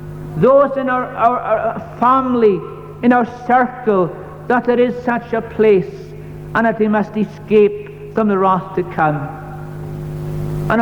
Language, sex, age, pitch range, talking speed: English, male, 60-79, 165-235 Hz, 145 wpm